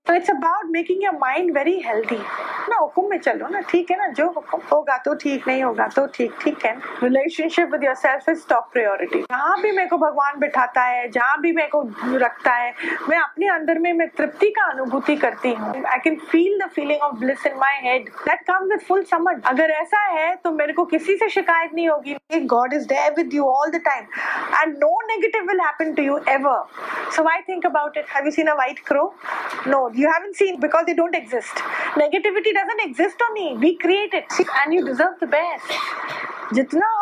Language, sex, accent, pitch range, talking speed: Hindi, female, native, 275-345 Hz, 80 wpm